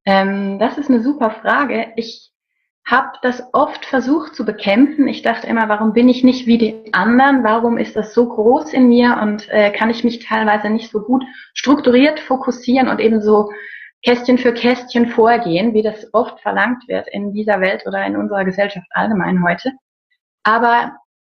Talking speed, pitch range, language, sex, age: 175 wpm, 200-250 Hz, German, female, 30-49